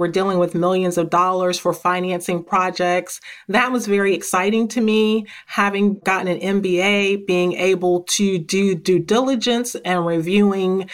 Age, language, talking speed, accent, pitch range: 30-49, English, 150 wpm, American, 175-200 Hz